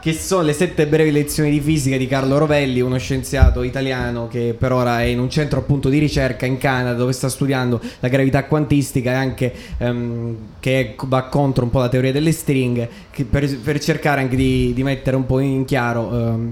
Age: 20-39